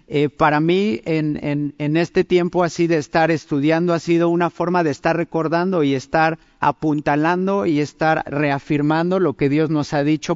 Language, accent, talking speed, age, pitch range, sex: Spanish, Mexican, 175 wpm, 50-69, 140-175 Hz, male